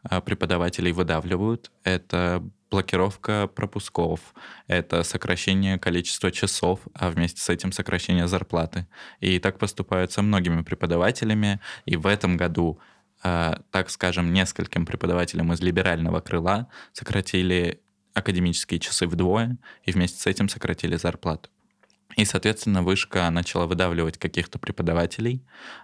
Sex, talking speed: male, 110 wpm